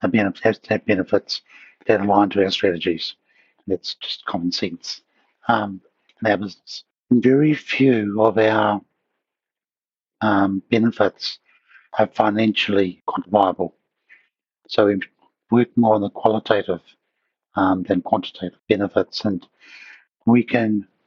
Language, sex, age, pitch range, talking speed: English, male, 60-79, 100-115 Hz, 115 wpm